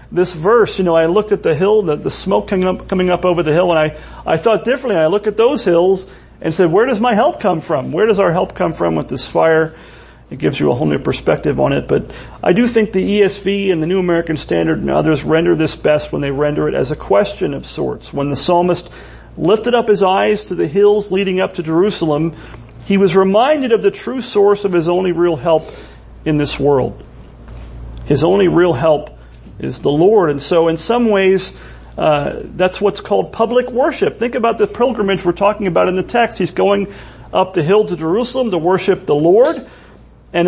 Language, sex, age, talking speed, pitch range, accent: English, male, 40-59, 220 wpm, 160-210 Hz, American